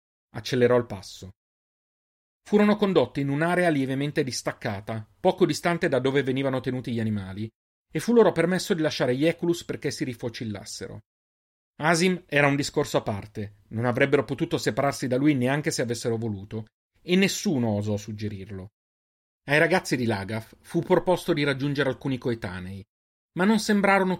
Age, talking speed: 40-59, 150 wpm